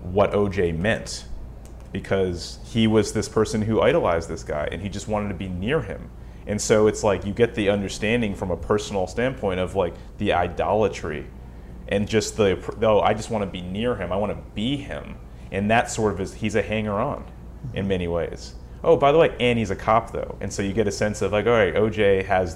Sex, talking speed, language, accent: male, 225 wpm, English, American